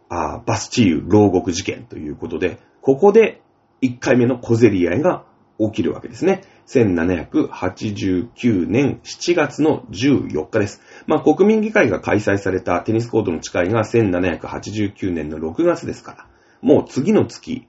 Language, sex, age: Japanese, male, 30-49